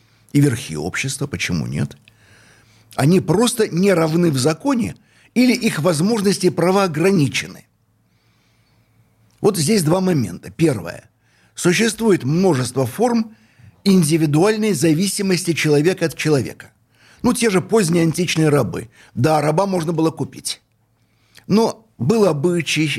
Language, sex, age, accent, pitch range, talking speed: Russian, male, 60-79, native, 115-165 Hz, 115 wpm